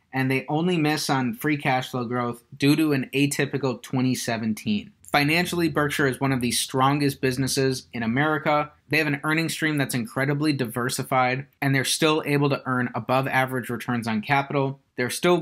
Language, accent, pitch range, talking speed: English, American, 125-145 Hz, 175 wpm